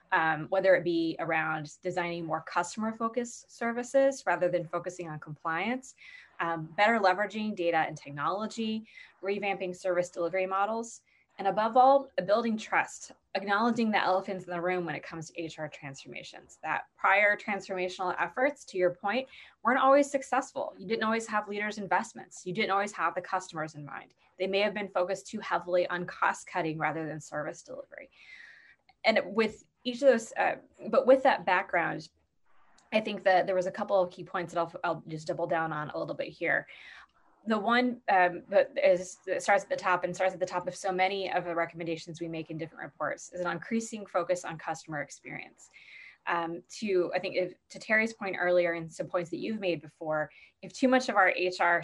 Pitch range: 170-215 Hz